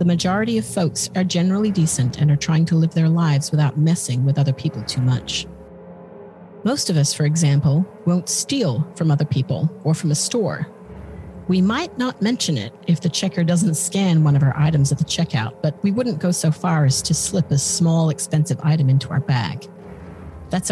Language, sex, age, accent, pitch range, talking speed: English, female, 40-59, American, 140-175 Hz, 200 wpm